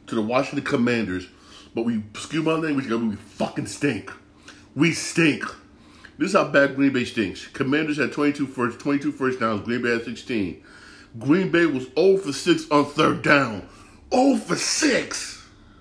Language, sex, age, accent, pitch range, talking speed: English, male, 40-59, American, 105-145 Hz, 165 wpm